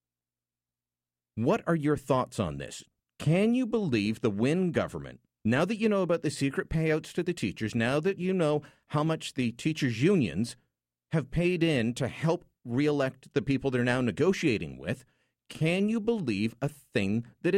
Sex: male